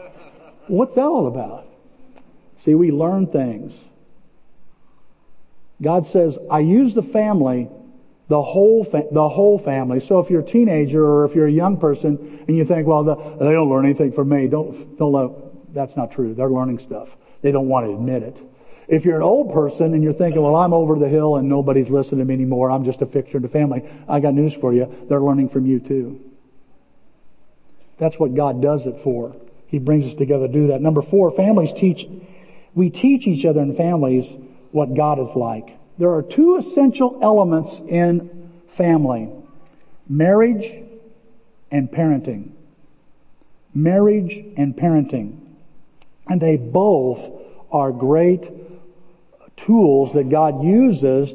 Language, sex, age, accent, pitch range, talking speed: English, male, 50-69, American, 140-180 Hz, 165 wpm